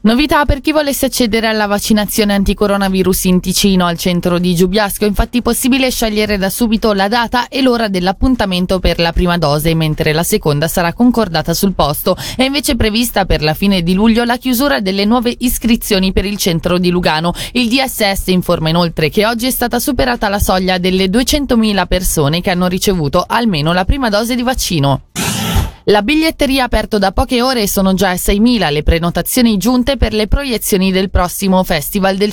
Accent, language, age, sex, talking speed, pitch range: native, Italian, 20-39, female, 185 wpm, 175-235 Hz